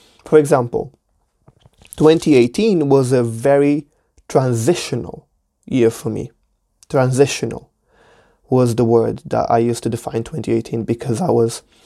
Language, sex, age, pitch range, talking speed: English, male, 20-39, 115-145 Hz, 115 wpm